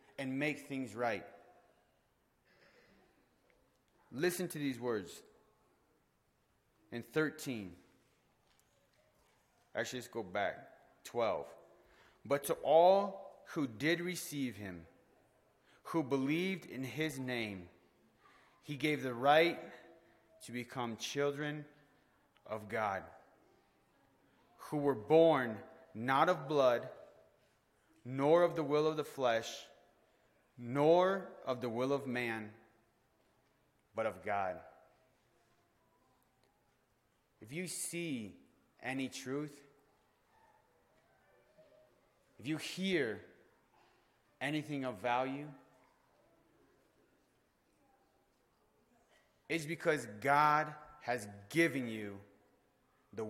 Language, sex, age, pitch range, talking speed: English, male, 30-49, 115-155 Hz, 85 wpm